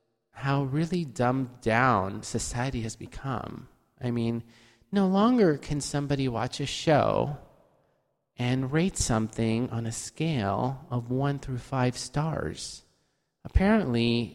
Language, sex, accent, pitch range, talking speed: English, male, American, 110-135 Hz, 115 wpm